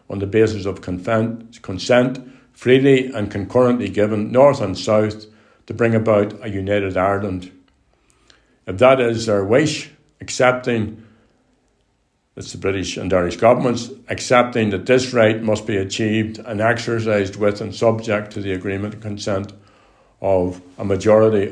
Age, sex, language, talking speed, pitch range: 60-79, male, English, 140 wpm, 100-120 Hz